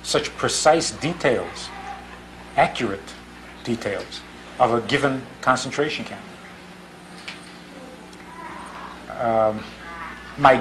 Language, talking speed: English, 70 wpm